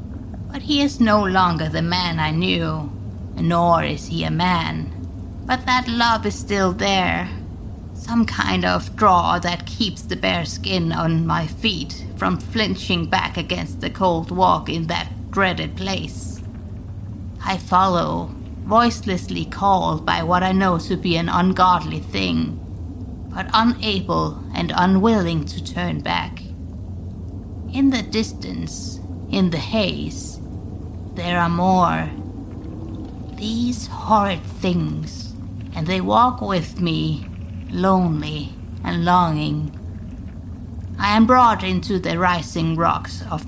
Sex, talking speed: female, 125 wpm